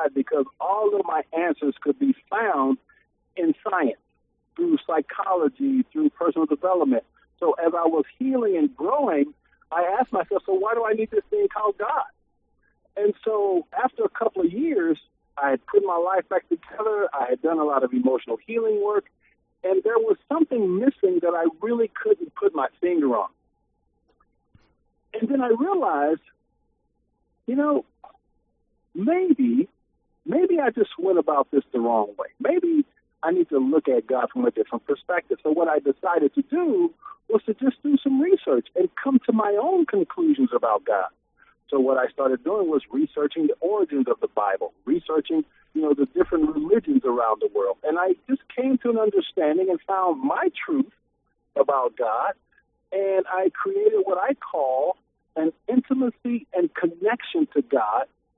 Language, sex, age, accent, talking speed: English, male, 50-69, American, 170 wpm